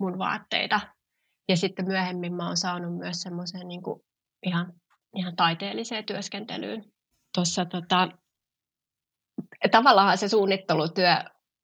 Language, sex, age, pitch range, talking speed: Finnish, female, 30-49, 175-195 Hz, 105 wpm